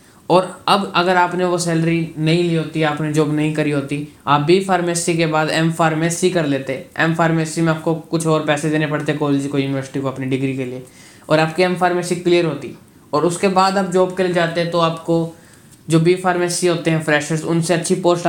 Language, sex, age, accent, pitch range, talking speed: Hindi, male, 20-39, native, 145-170 Hz, 215 wpm